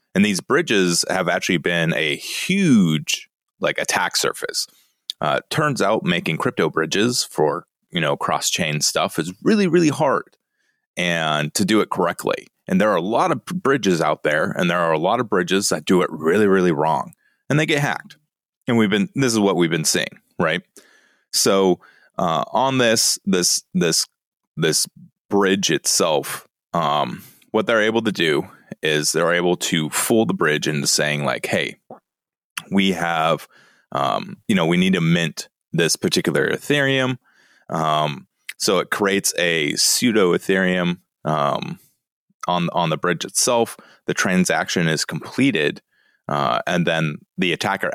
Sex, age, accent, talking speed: male, 30-49, American, 160 wpm